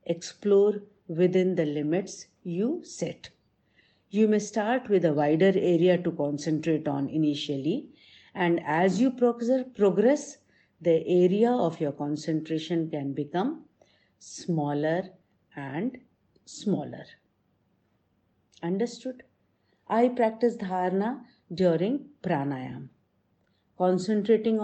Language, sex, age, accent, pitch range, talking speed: English, female, 50-69, Indian, 155-215 Hz, 95 wpm